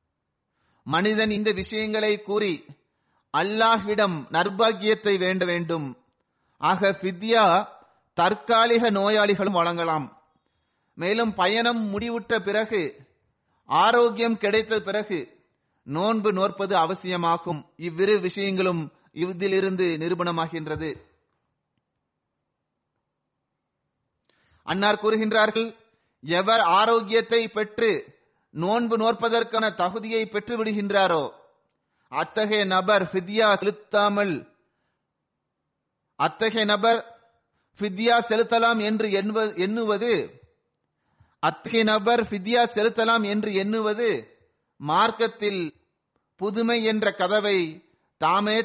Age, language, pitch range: 30-49, Tamil, 190-225 Hz